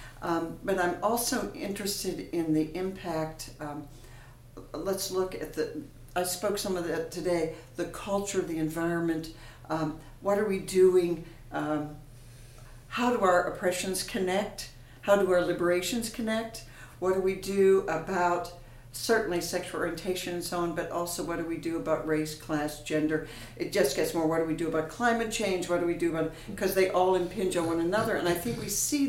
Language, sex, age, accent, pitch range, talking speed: English, female, 60-79, American, 150-190 Hz, 180 wpm